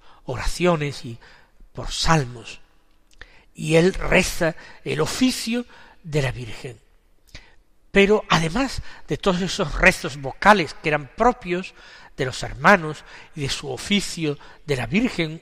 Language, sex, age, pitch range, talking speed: Spanish, male, 60-79, 140-200 Hz, 125 wpm